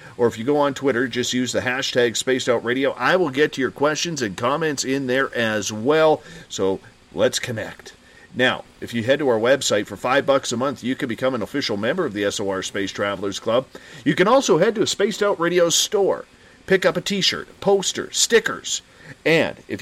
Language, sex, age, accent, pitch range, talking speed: English, male, 40-59, American, 120-175 Hz, 205 wpm